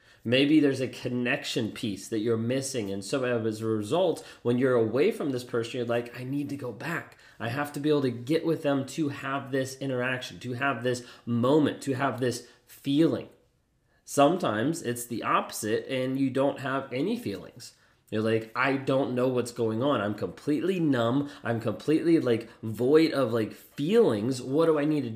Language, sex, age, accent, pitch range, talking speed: English, male, 30-49, American, 120-145 Hz, 190 wpm